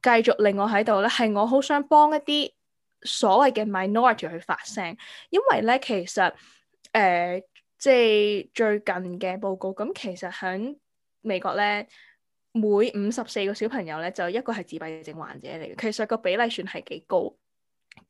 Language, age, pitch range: Chinese, 10-29, 195-255 Hz